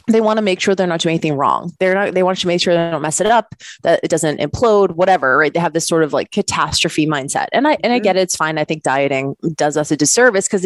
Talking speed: 295 wpm